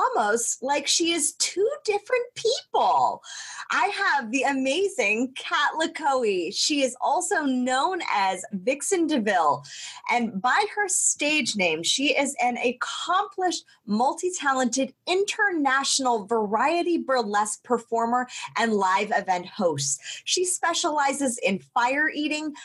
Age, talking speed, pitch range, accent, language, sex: 30-49, 115 wpm, 230-330 Hz, American, English, female